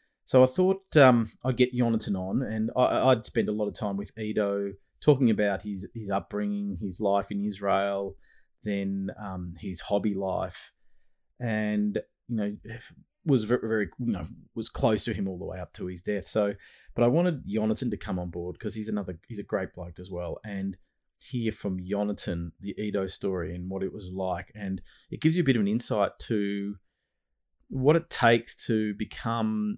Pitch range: 95-110 Hz